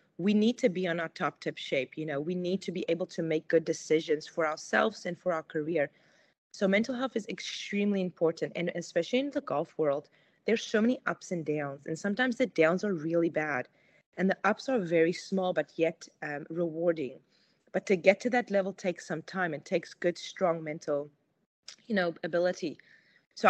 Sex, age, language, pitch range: female, 20-39, English, 160-195 Hz